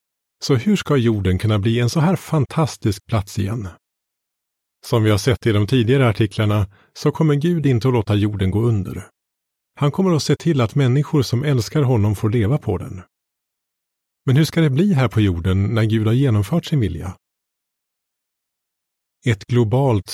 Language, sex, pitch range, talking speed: Swedish, male, 105-135 Hz, 175 wpm